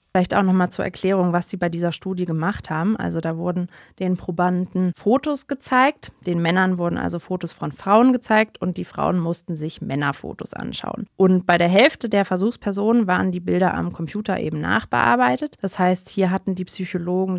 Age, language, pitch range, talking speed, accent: 20-39, German, 165-190 Hz, 185 wpm, German